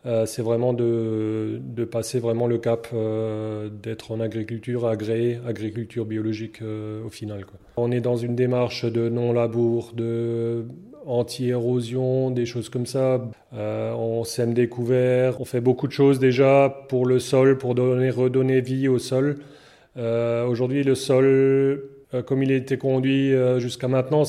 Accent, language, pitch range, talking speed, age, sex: French, French, 120-130 Hz, 160 wpm, 30-49, male